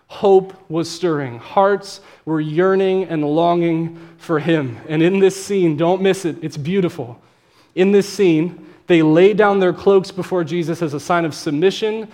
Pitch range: 165-205 Hz